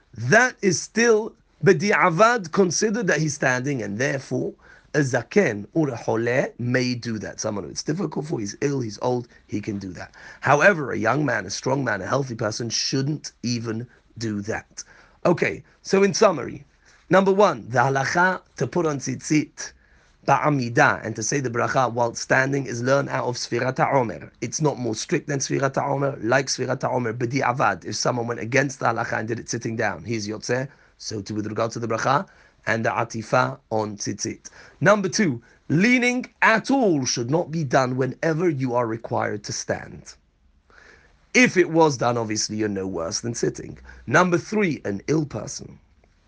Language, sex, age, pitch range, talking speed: English, male, 40-59, 115-160 Hz, 175 wpm